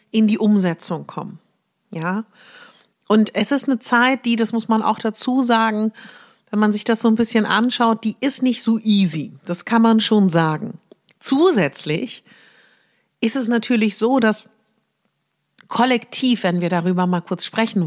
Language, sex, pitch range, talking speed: German, female, 195-230 Hz, 160 wpm